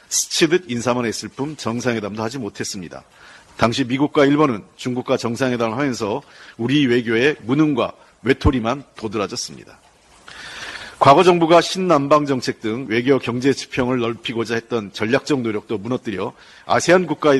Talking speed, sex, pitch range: 110 wpm, male, 115-150 Hz